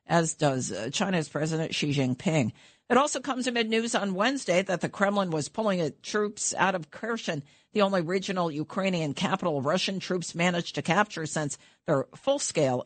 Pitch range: 150-200 Hz